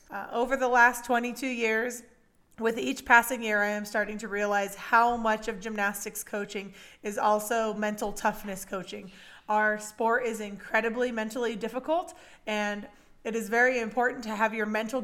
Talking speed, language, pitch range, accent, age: 160 wpm, English, 210-245 Hz, American, 20-39